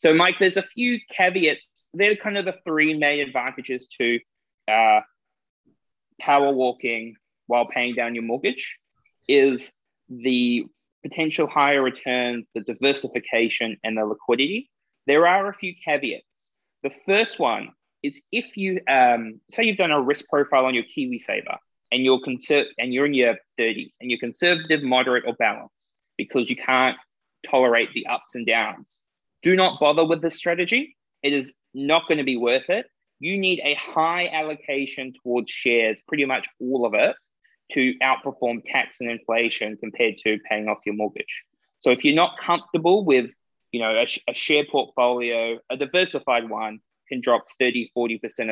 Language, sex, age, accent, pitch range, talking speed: English, male, 20-39, Australian, 120-160 Hz, 155 wpm